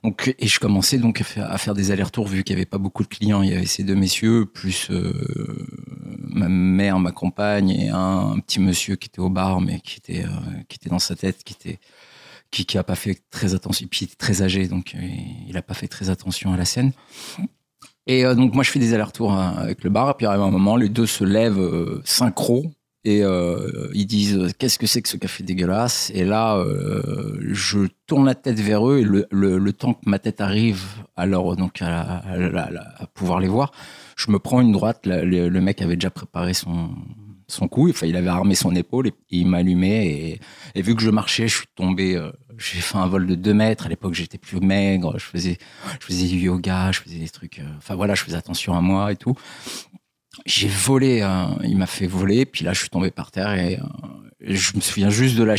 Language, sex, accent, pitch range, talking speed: French, male, French, 90-105 Hz, 245 wpm